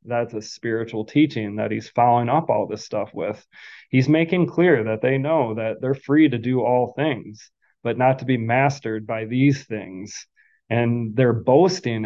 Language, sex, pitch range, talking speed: English, male, 115-135 Hz, 180 wpm